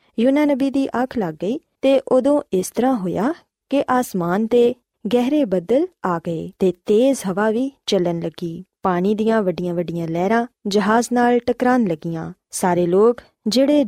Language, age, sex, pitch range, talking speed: Punjabi, 20-39, female, 180-250 Hz, 150 wpm